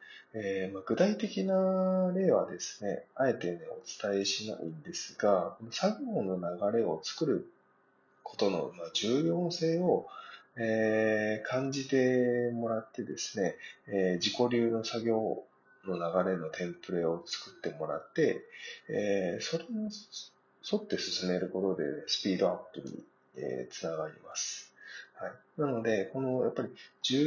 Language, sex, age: Japanese, male, 30-49